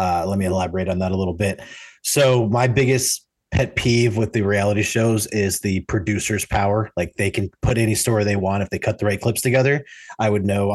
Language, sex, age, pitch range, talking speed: English, male, 30-49, 100-125 Hz, 225 wpm